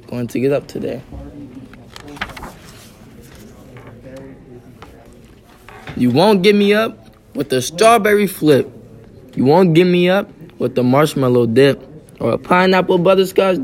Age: 20-39